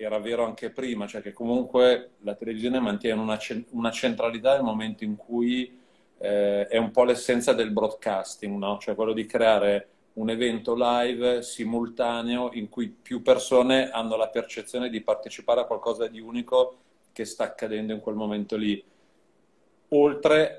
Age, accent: 40-59, native